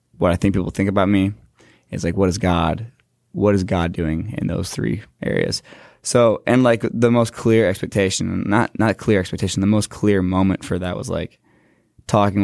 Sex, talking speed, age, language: male, 195 wpm, 20-39, English